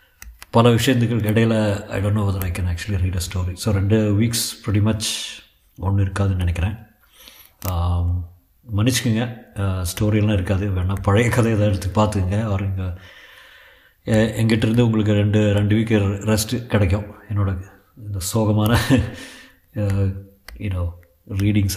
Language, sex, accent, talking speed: Tamil, male, native, 120 wpm